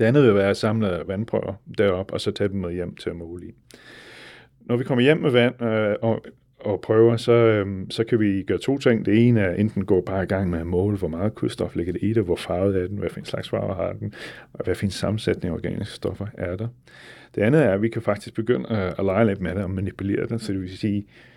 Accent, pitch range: native, 100-120 Hz